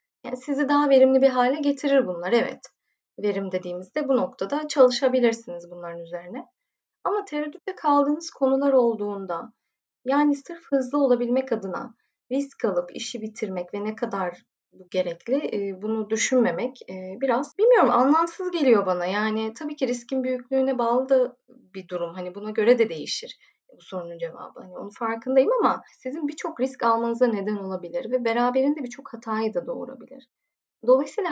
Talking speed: 140 wpm